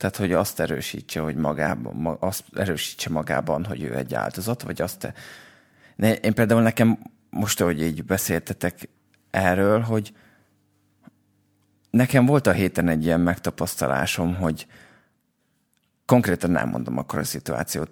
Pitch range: 80-105 Hz